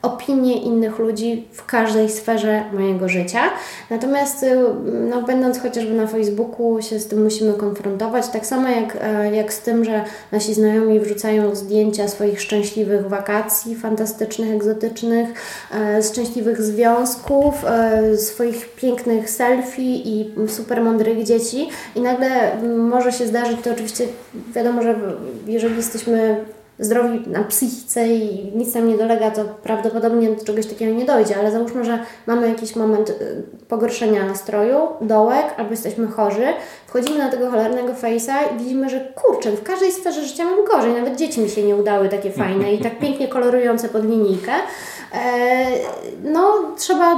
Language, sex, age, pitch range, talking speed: Polish, female, 20-39, 215-255 Hz, 145 wpm